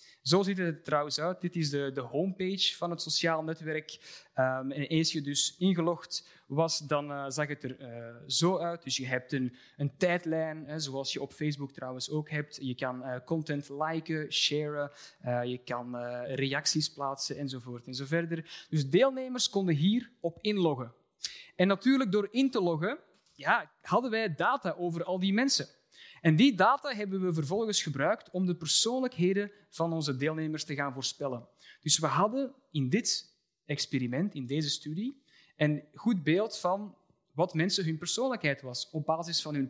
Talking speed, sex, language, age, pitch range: 170 wpm, male, Dutch, 20-39, 145-200 Hz